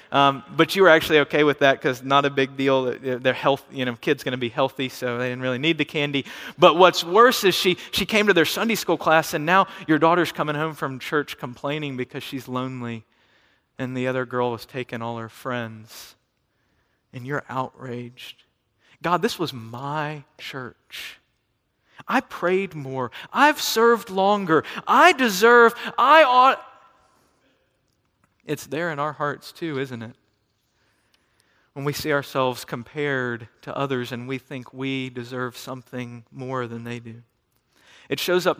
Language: English